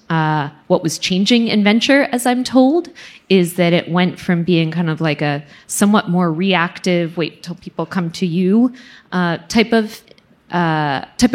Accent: American